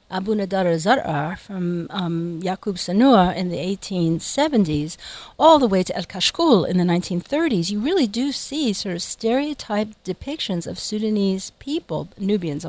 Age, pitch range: 40-59, 175-240 Hz